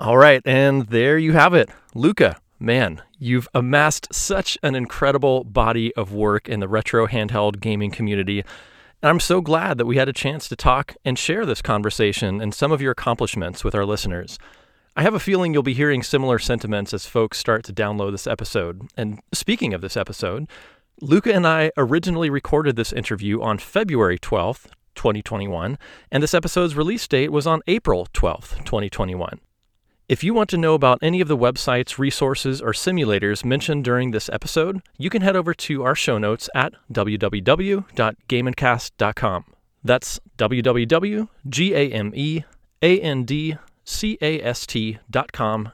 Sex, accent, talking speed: male, American, 155 wpm